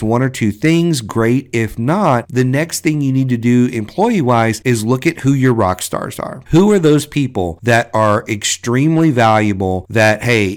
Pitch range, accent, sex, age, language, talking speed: 105-140 Hz, American, male, 50-69, English, 185 wpm